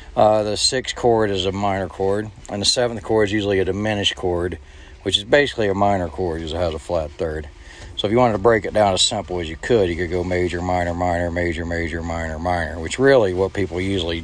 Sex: male